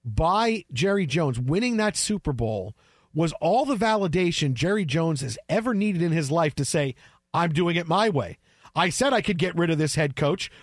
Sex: male